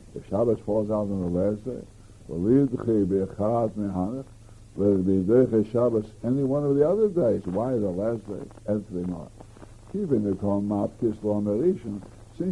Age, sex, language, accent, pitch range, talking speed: 60-79, male, English, American, 110-125 Hz, 95 wpm